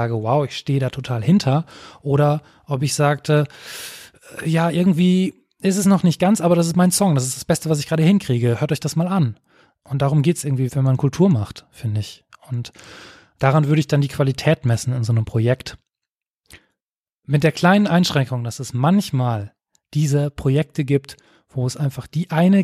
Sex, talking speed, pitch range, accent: male, 195 wpm, 125-155 Hz, German